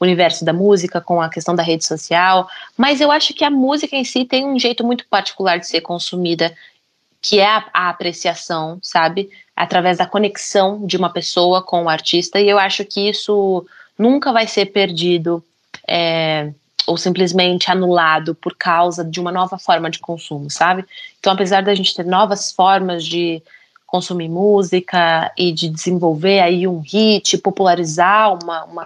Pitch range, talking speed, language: 175-210 Hz, 165 wpm, Portuguese